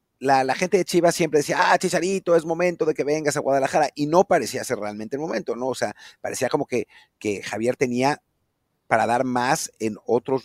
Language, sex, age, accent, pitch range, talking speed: Spanish, male, 40-59, Mexican, 115-155 Hz, 210 wpm